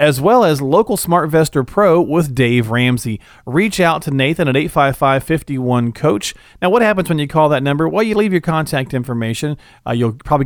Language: English